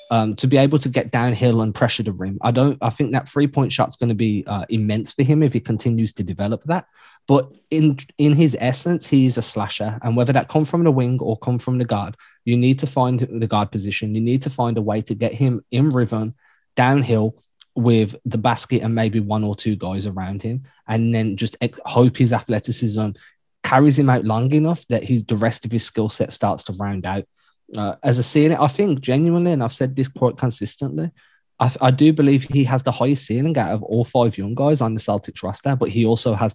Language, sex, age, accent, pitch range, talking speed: English, male, 20-39, British, 110-130 Hz, 230 wpm